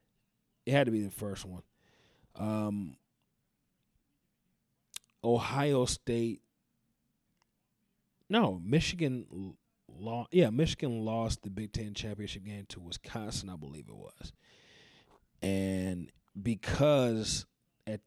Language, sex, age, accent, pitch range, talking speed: English, male, 30-49, American, 100-115 Hz, 100 wpm